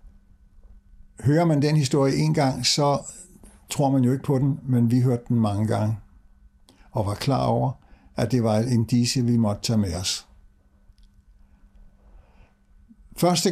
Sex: male